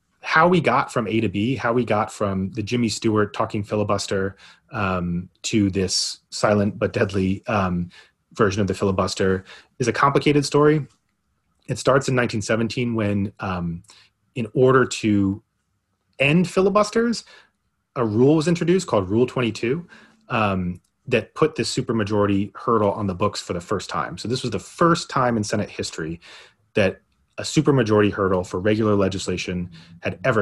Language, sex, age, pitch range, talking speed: English, male, 30-49, 100-125 Hz, 160 wpm